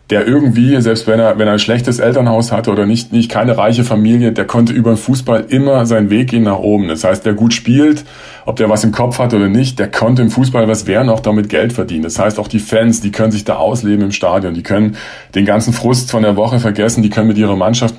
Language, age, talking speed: German, 40-59, 255 wpm